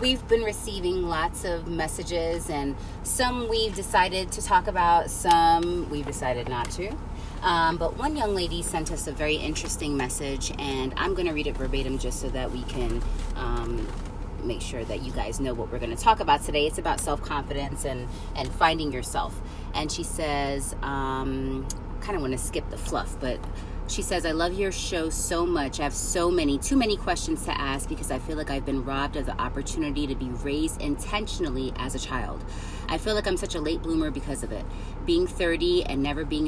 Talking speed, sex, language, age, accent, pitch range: 200 wpm, female, English, 30-49, American, 135-180 Hz